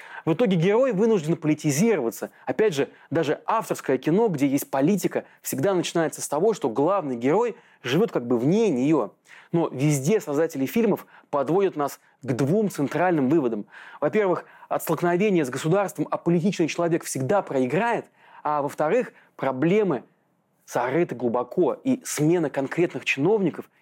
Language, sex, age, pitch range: Russian, male, 30-49, 140-195 Hz